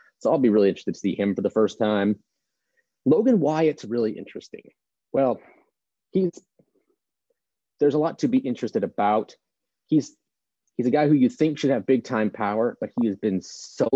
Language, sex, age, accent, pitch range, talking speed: English, male, 30-49, American, 100-130 Hz, 185 wpm